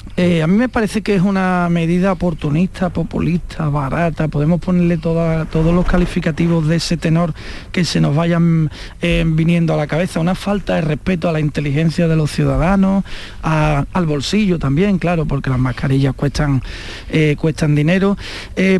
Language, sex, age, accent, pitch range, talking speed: Spanish, male, 40-59, Spanish, 150-195 Hz, 165 wpm